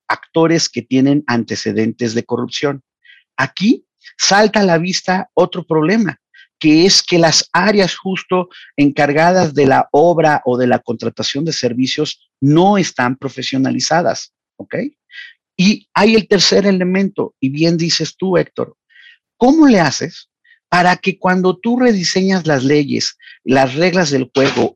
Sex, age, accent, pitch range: male, 40-59, Mexican, 140-190 Hz